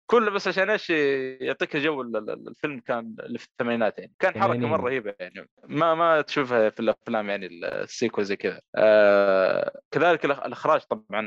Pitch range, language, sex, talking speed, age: 115-165 Hz, Arabic, male, 155 wpm, 20-39